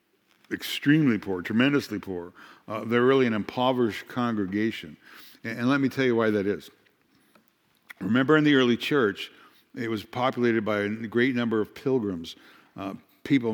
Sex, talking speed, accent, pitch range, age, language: male, 155 wpm, American, 105-125 Hz, 60-79, English